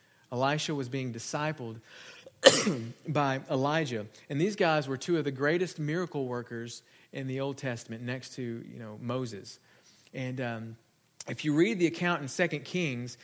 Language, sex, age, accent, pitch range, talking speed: English, male, 40-59, American, 130-175 Hz, 160 wpm